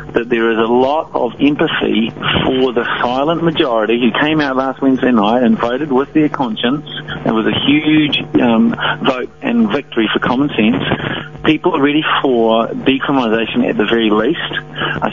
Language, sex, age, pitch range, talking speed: English, male, 50-69, 110-145 Hz, 170 wpm